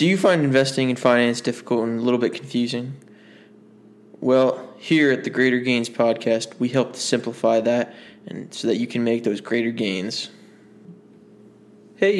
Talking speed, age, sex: 165 wpm, 20-39, male